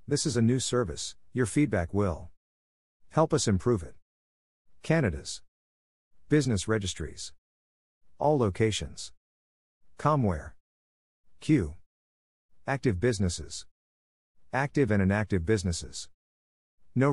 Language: English